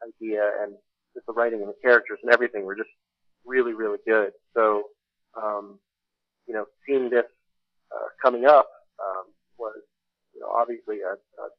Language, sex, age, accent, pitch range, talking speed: English, male, 30-49, American, 100-120 Hz, 160 wpm